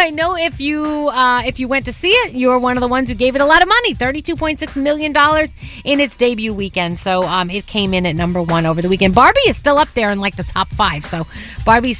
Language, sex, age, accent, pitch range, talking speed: English, female, 30-49, American, 225-310 Hz, 265 wpm